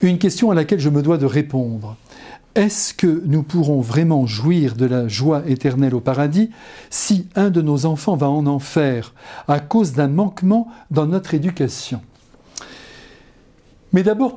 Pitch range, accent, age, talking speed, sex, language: 135-185 Hz, French, 60-79, 160 wpm, male, French